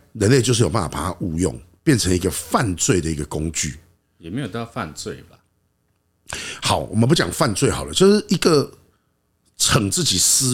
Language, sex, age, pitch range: Chinese, male, 50-69, 85-125 Hz